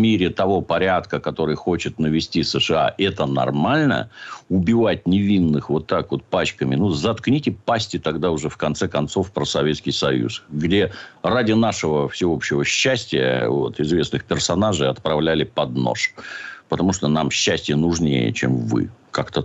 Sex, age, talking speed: male, 60-79, 140 wpm